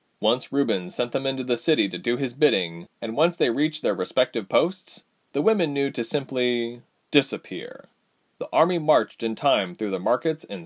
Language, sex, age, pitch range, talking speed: English, male, 30-49, 115-155 Hz, 185 wpm